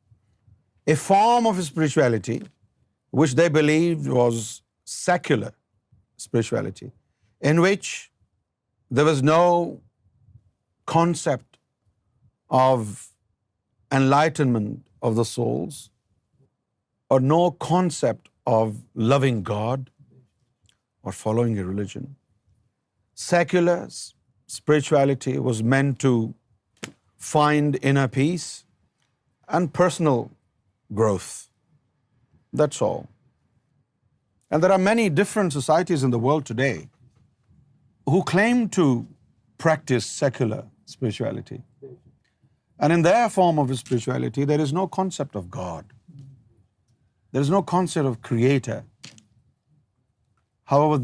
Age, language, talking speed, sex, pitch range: 50-69, Urdu, 95 wpm, male, 110-150 Hz